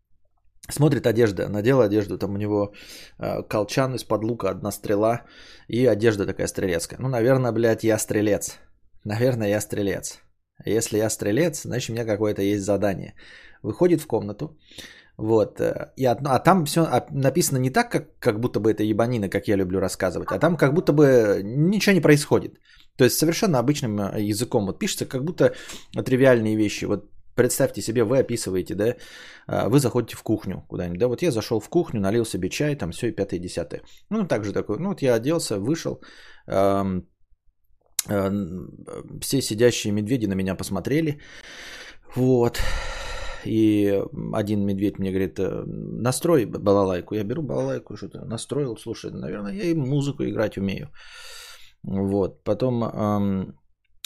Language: Bulgarian